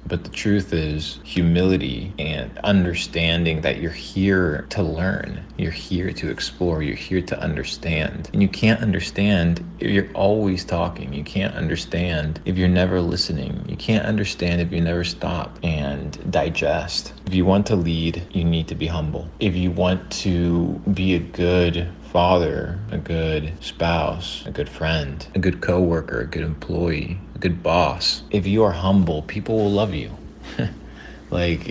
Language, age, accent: English, 30-49, American